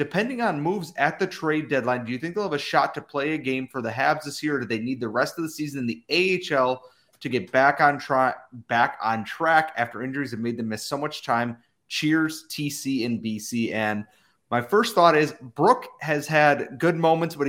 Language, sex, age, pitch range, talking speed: English, male, 30-49, 115-150 Hz, 220 wpm